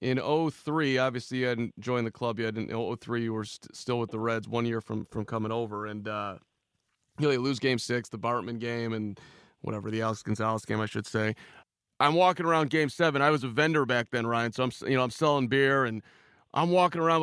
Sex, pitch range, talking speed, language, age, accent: male, 125-170 Hz, 235 wpm, English, 30-49, American